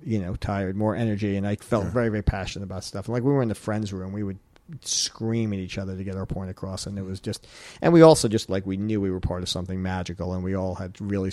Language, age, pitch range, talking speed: English, 40-59, 95-110 Hz, 280 wpm